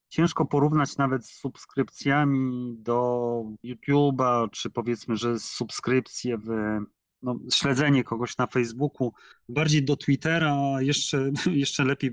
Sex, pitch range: male, 115-140 Hz